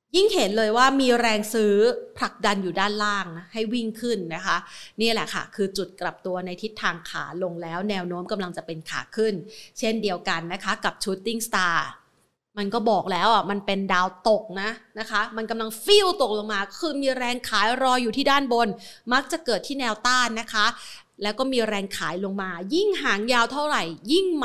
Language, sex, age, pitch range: Thai, female, 30-49, 200-260 Hz